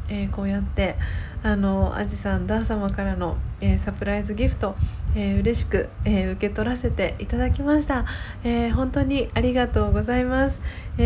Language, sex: Japanese, female